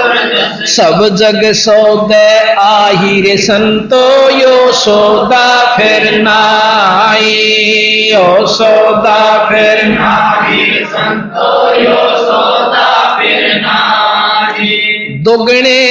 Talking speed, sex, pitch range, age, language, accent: 40 wpm, male, 215-245 Hz, 50-69, Hindi, native